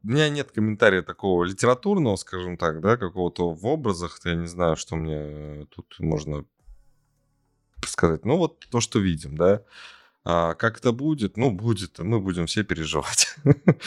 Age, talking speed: 20-39, 155 wpm